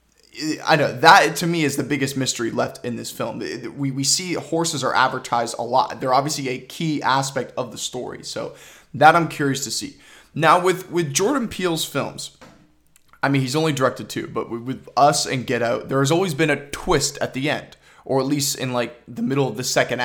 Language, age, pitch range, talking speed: English, 20-39, 130-165 Hz, 215 wpm